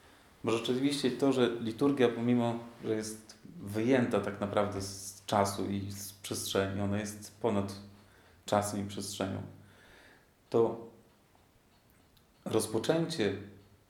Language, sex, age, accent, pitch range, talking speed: Polish, male, 40-59, native, 100-130 Hz, 100 wpm